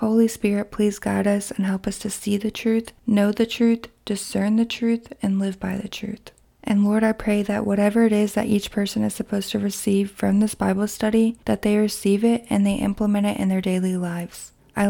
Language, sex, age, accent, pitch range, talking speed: English, female, 20-39, American, 200-230 Hz, 220 wpm